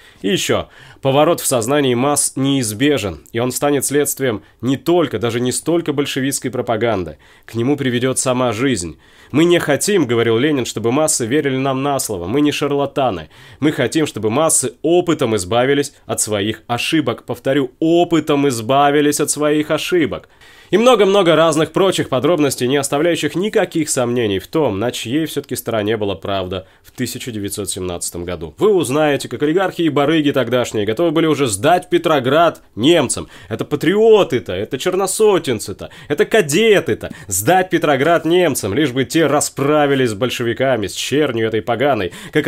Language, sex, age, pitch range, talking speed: Russian, male, 30-49, 120-160 Hz, 150 wpm